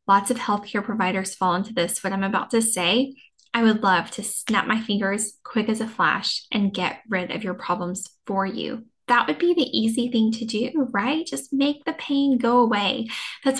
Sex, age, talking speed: female, 10-29, 205 wpm